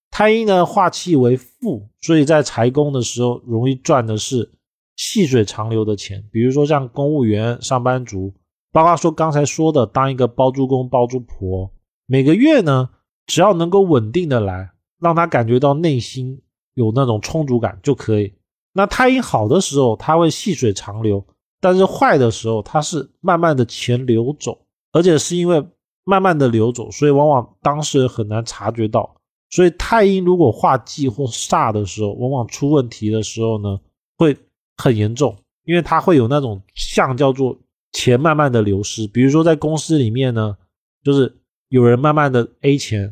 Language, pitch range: Chinese, 110-150 Hz